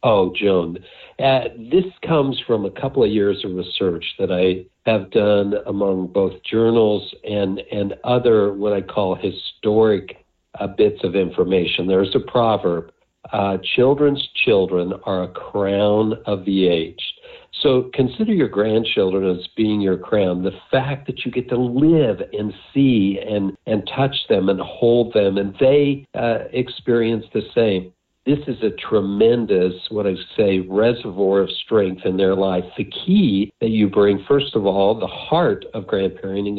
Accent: American